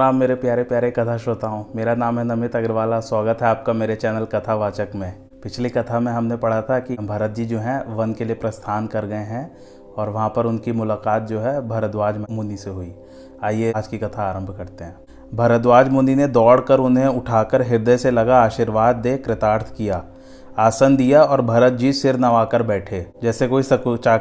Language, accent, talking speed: Hindi, native, 120 wpm